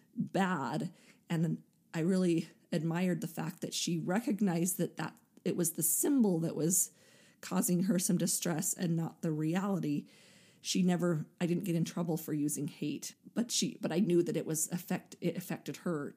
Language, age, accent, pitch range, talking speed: English, 40-59, American, 170-215 Hz, 180 wpm